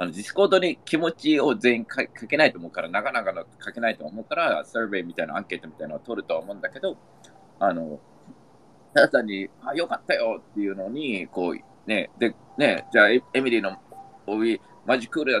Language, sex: Japanese, male